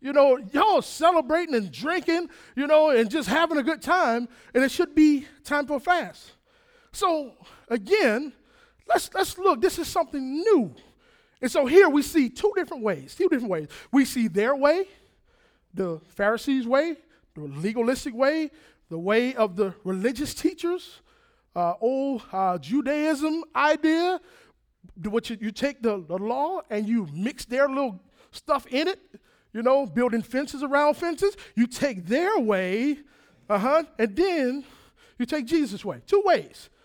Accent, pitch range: American, 230-335 Hz